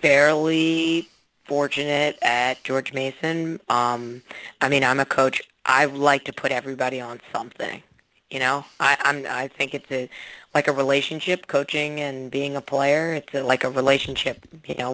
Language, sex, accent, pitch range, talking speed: English, female, American, 135-150 Hz, 165 wpm